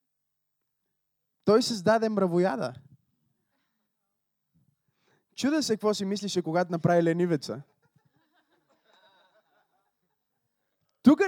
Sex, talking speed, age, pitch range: male, 65 wpm, 20-39, 145-195 Hz